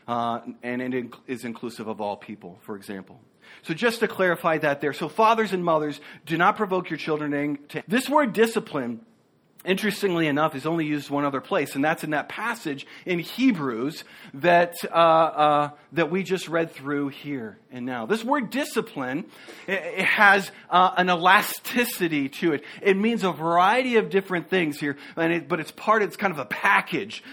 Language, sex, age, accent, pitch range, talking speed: English, male, 40-59, American, 150-210 Hz, 180 wpm